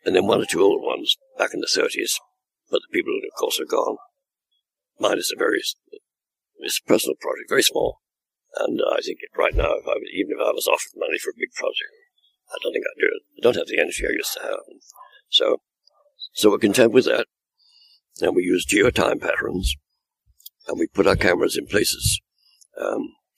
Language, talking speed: English, 205 wpm